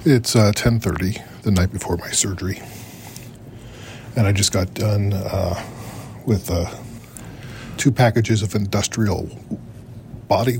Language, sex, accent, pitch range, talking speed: English, male, American, 105-125 Hz, 120 wpm